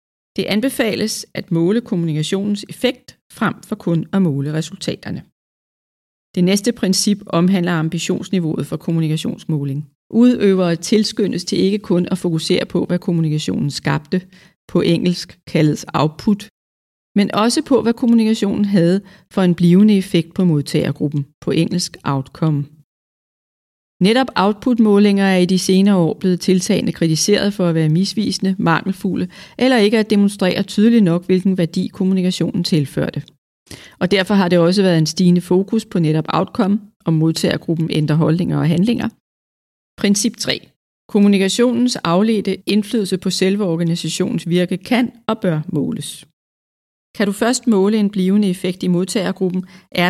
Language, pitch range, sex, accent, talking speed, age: Danish, 160-205 Hz, female, native, 140 wpm, 40-59